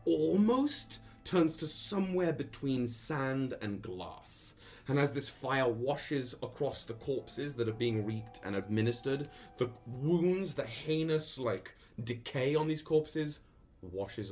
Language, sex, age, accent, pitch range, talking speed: English, male, 20-39, British, 110-145 Hz, 135 wpm